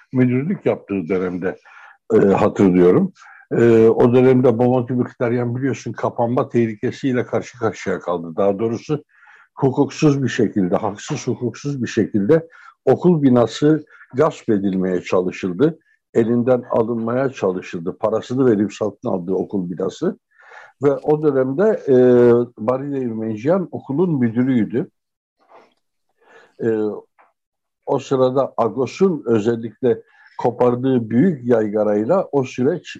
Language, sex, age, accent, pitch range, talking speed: Turkish, male, 60-79, native, 105-135 Hz, 105 wpm